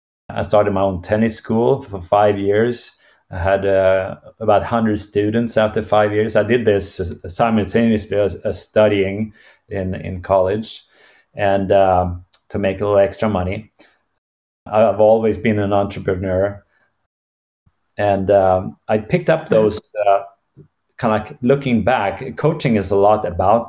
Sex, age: male, 30-49